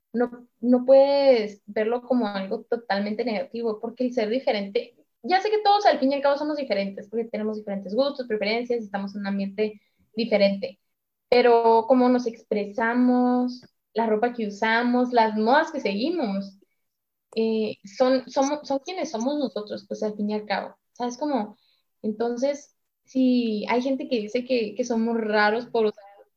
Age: 20-39